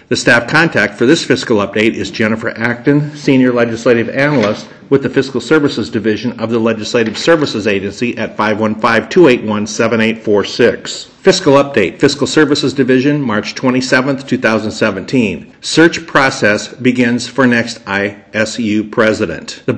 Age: 50-69